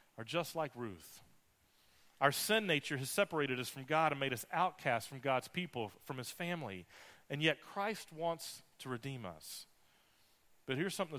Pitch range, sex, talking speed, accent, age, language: 120-165 Hz, male, 170 wpm, American, 40-59, English